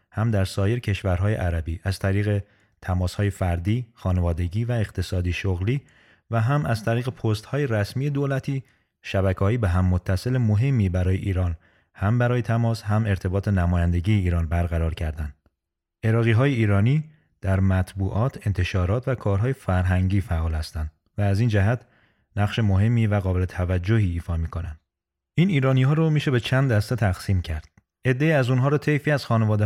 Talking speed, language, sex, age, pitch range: 150 wpm, Persian, male, 30-49, 95-125 Hz